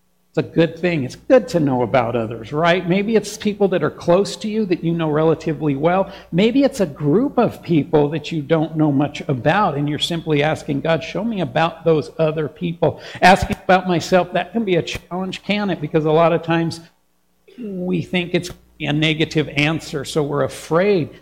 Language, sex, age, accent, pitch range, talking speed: English, male, 60-79, American, 135-175 Hz, 200 wpm